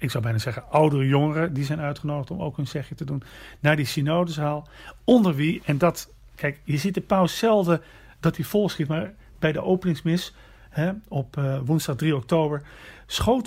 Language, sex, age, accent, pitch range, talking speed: Dutch, male, 40-59, Dutch, 135-175 Hz, 185 wpm